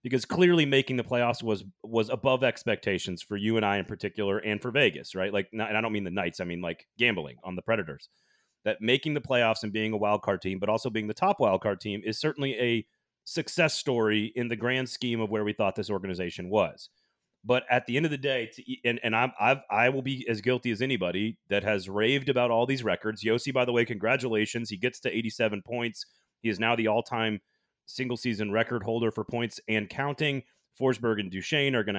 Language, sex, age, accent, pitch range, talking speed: English, male, 30-49, American, 110-130 Hz, 225 wpm